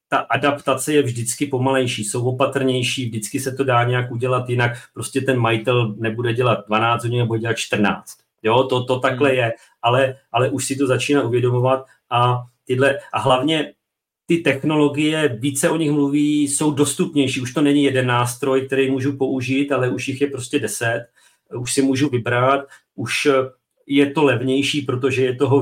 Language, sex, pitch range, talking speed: Czech, male, 125-140 Hz, 170 wpm